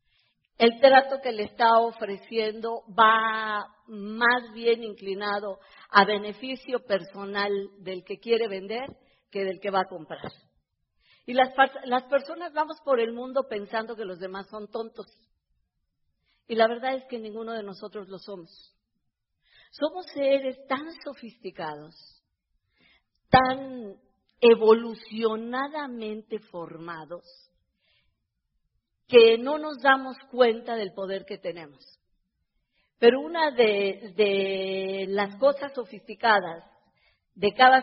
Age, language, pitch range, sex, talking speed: 40-59, Spanish, 200-255 Hz, female, 115 wpm